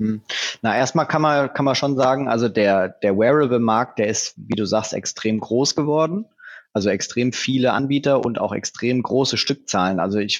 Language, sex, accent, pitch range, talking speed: German, male, German, 100-130 Hz, 180 wpm